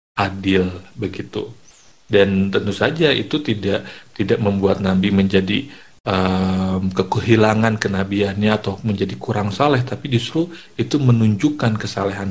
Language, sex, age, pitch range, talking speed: Indonesian, male, 50-69, 100-120 Hz, 110 wpm